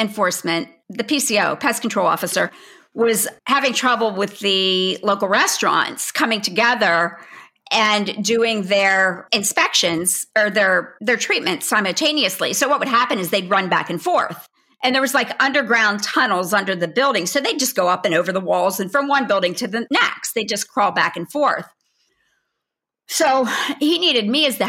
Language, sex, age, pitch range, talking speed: English, female, 50-69, 190-270 Hz, 175 wpm